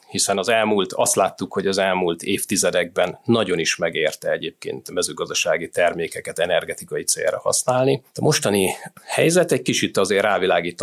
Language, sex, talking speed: Hungarian, male, 145 wpm